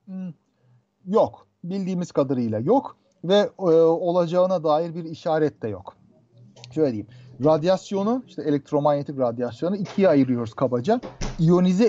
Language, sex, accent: Turkish, male, native